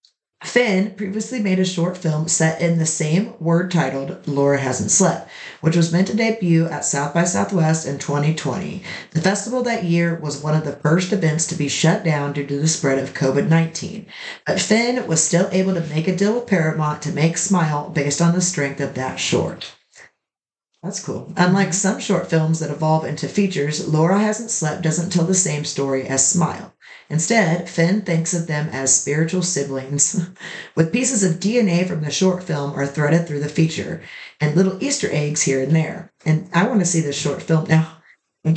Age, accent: 40-59, American